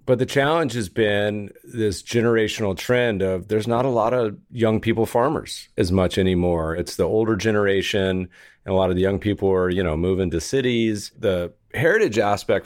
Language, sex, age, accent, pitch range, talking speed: English, male, 40-59, American, 90-110 Hz, 190 wpm